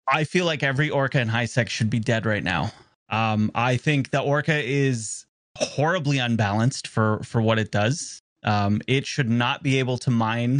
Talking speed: 185 wpm